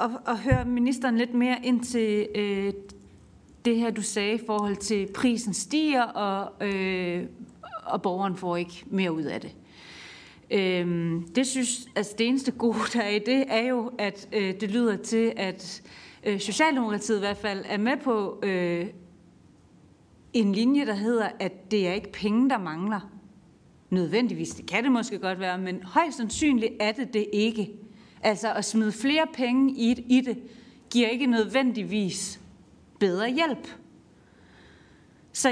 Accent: native